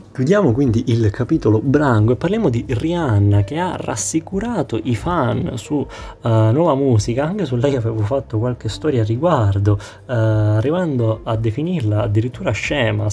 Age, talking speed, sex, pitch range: 20-39, 150 wpm, male, 110-140 Hz